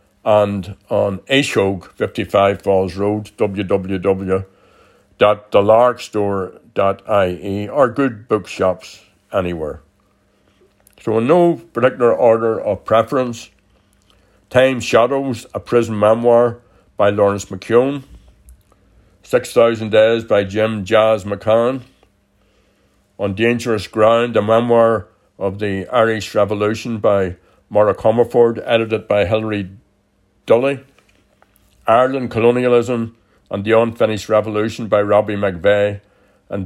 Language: English